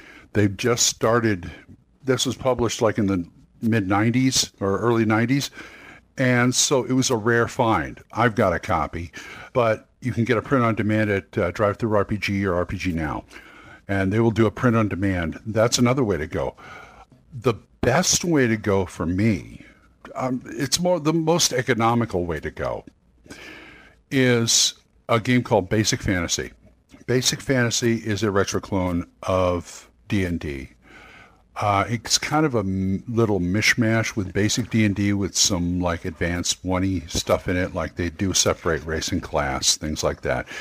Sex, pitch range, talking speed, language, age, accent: male, 95-125 Hz, 160 wpm, English, 60-79, American